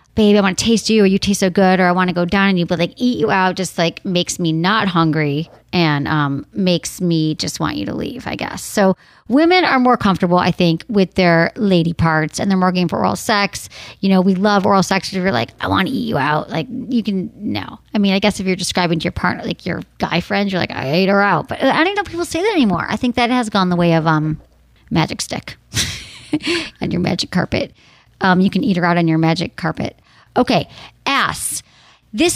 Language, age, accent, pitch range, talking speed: English, 40-59, American, 175-240 Hz, 250 wpm